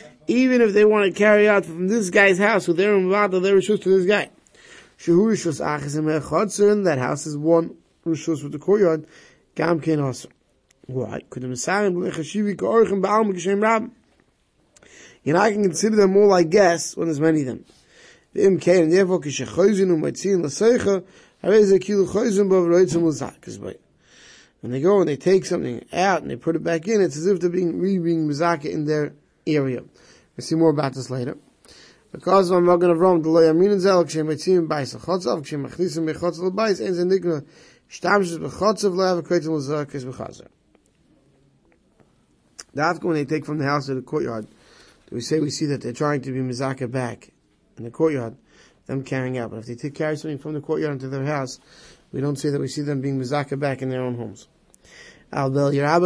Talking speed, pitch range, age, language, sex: 130 wpm, 140-190 Hz, 30-49, English, male